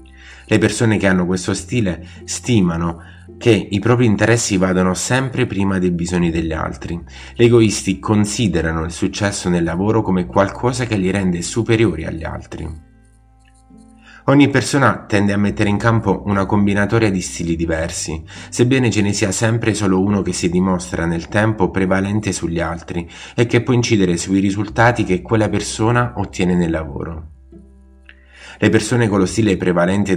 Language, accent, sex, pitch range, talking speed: Italian, native, male, 90-110 Hz, 155 wpm